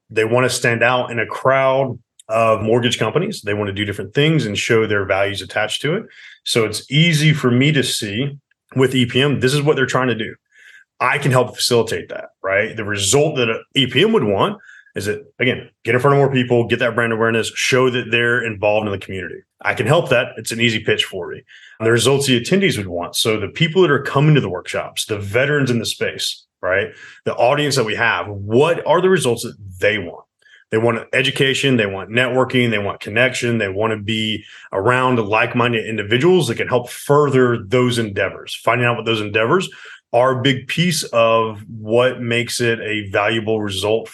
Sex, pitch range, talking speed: male, 110-130 Hz, 210 wpm